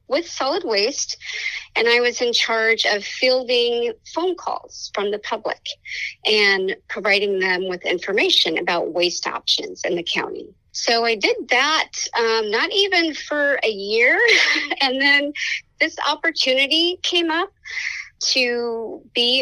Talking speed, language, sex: 135 wpm, English, female